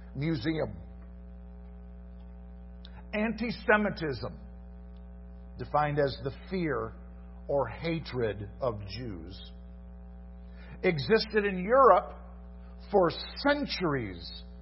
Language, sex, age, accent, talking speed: English, male, 50-69, American, 60 wpm